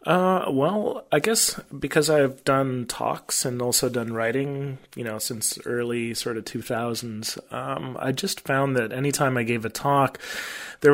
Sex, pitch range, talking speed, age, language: male, 115-140 Hz, 165 wpm, 30-49, English